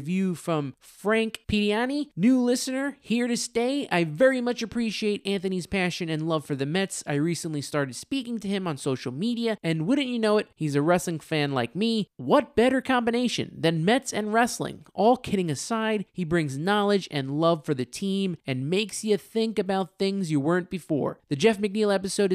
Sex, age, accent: male, 20-39, American